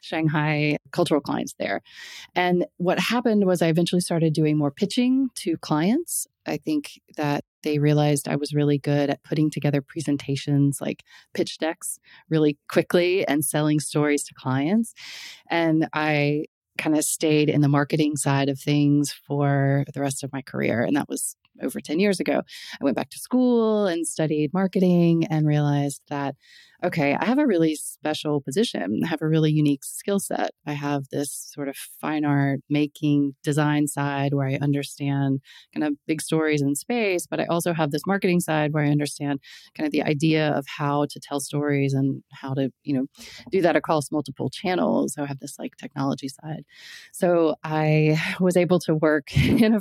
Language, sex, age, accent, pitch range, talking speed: English, female, 30-49, American, 145-170 Hz, 180 wpm